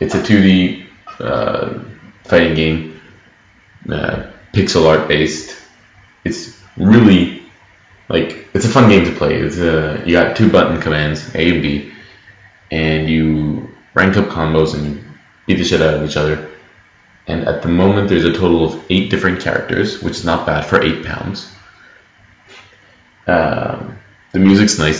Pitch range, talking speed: 80-95 Hz, 150 wpm